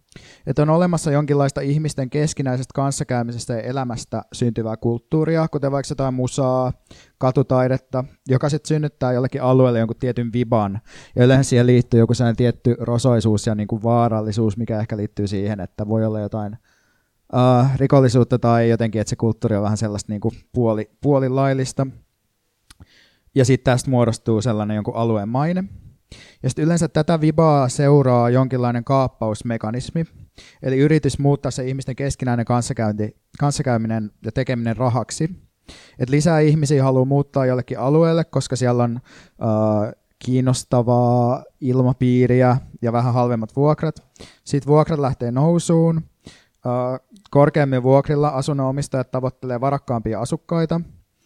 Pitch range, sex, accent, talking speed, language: 115-140 Hz, male, native, 125 wpm, Finnish